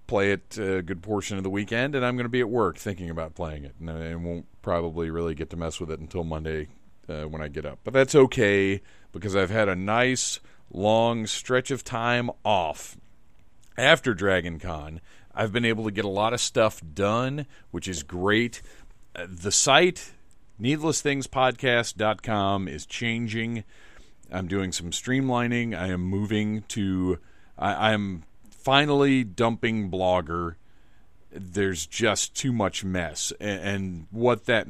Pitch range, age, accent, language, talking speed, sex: 90-115 Hz, 40-59, American, English, 155 wpm, male